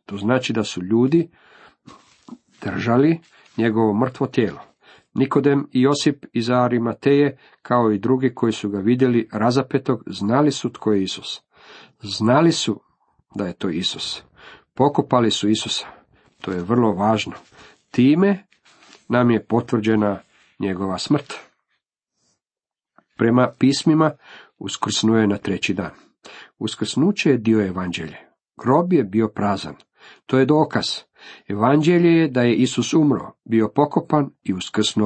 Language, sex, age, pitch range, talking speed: Croatian, male, 50-69, 110-145 Hz, 125 wpm